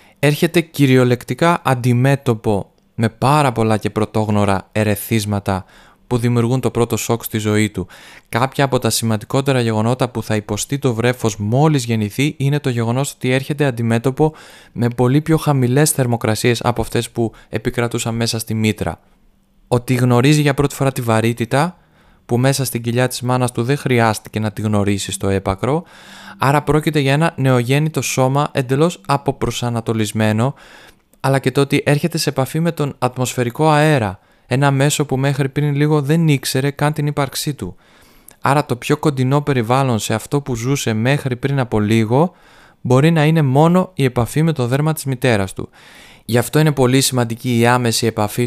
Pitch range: 110-140 Hz